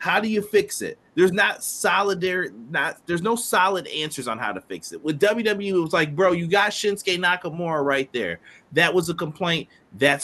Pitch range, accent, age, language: 155-235 Hz, American, 30-49, English